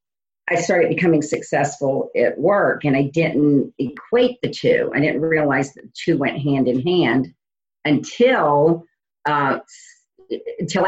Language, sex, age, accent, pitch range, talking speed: English, female, 50-69, American, 135-175 Hz, 140 wpm